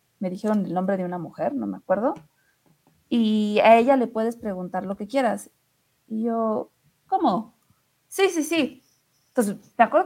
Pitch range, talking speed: 195-240 Hz, 165 wpm